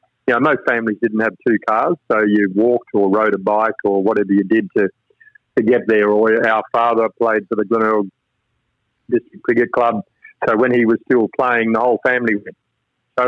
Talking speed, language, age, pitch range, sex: 200 wpm, English, 50-69, 105-120 Hz, male